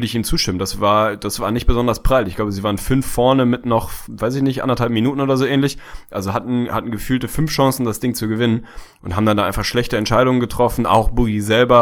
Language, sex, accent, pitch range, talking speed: German, male, German, 100-120 Hz, 240 wpm